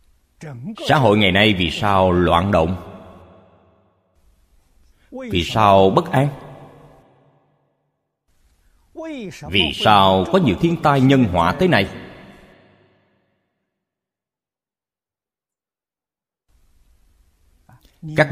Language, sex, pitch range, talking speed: Vietnamese, male, 85-125 Hz, 75 wpm